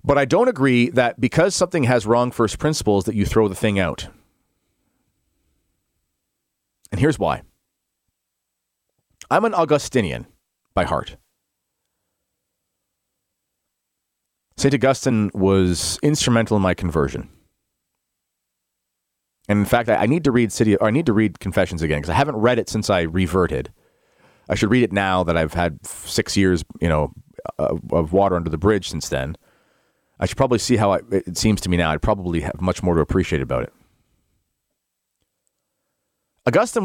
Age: 40-59